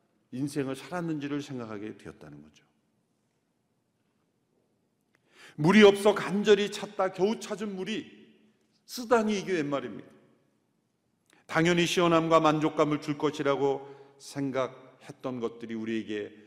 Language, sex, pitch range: Korean, male, 130-190 Hz